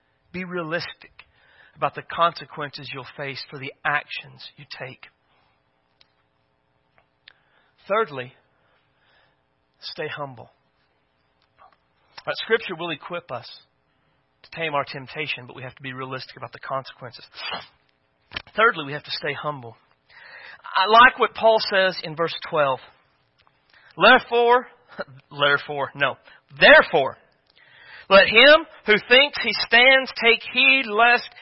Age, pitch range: 40-59, 120-200 Hz